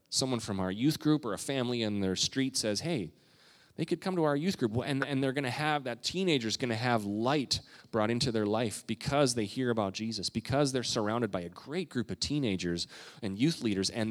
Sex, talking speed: male, 230 wpm